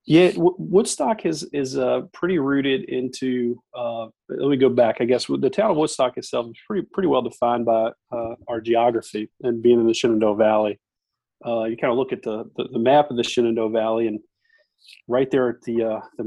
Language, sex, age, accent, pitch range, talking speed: English, male, 40-59, American, 115-130 Hz, 205 wpm